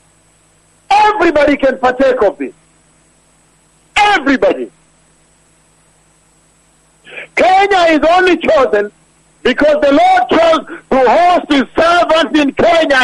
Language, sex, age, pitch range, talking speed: English, male, 50-69, 255-335 Hz, 90 wpm